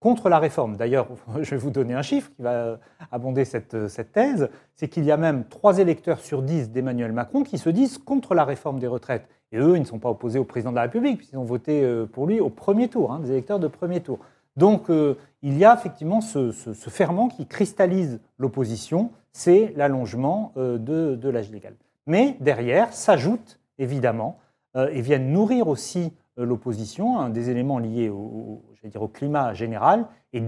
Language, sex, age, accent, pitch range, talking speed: French, male, 40-59, French, 125-185 Hz, 205 wpm